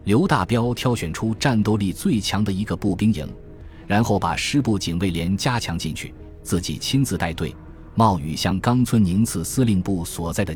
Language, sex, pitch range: Chinese, male, 85-115 Hz